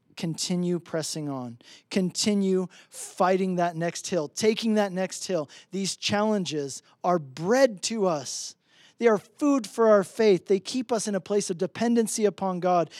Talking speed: 155 wpm